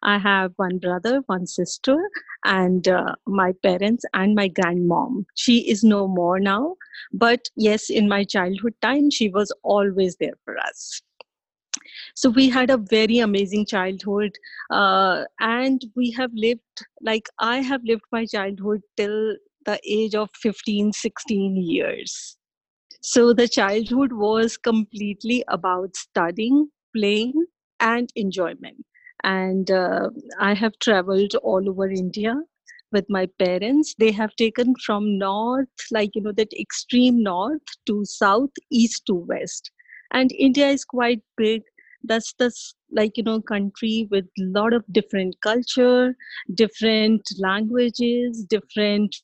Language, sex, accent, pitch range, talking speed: English, female, Indian, 200-245 Hz, 135 wpm